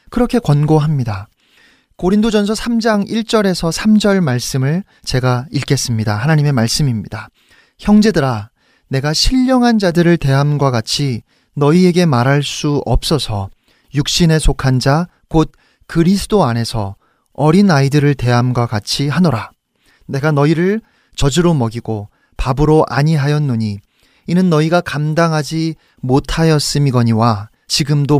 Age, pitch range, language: 40-59, 130-175 Hz, Korean